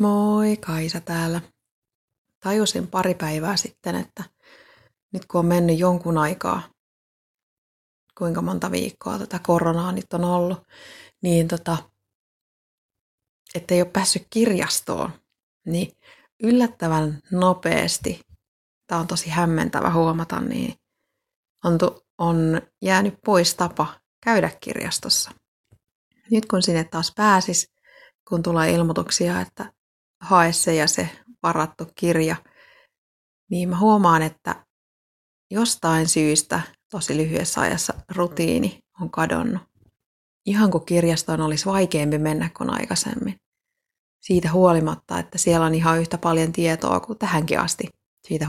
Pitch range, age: 160-190 Hz, 30-49